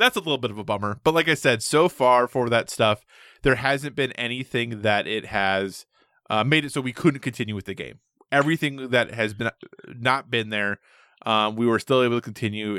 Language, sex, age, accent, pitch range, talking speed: English, male, 20-39, American, 105-130 Hz, 220 wpm